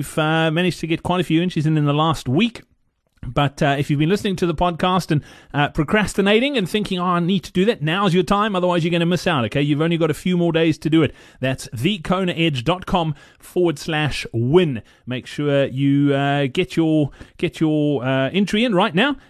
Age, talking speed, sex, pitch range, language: 30-49, 225 wpm, male, 140-185 Hz, English